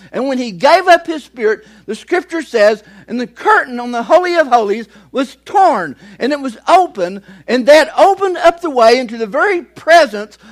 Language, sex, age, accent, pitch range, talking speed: English, male, 60-79, American, 225-335 Hz, 195 wpm